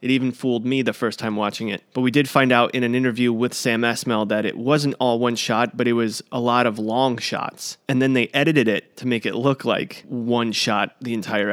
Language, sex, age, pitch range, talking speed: English, male, 30-49, 115-140 Hz, 250 wpm